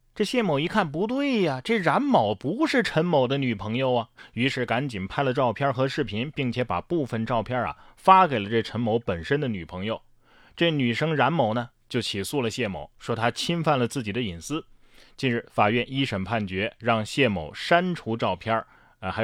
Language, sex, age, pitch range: Chinese, male, 20-39, 100-140 Hz